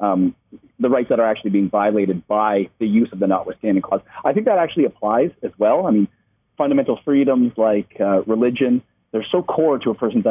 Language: English